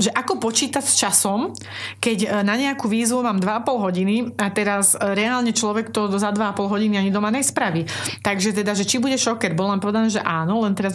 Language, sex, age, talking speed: Slovak, female, 30-49, 195 wpm